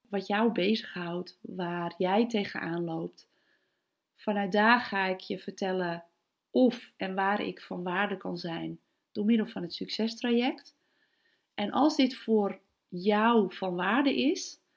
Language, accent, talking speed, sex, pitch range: Dutch, Dutch, 140 wpm, female, 180-235 Hz